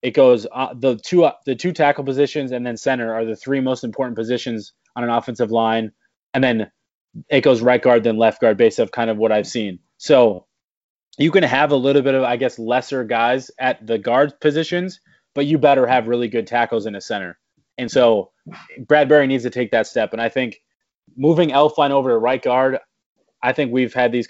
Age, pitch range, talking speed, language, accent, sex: 20-39, 120-145 Hz, 215 wpm, English, American, male